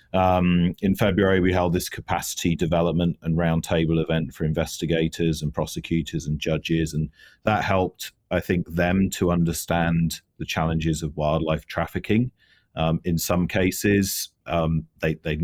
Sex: male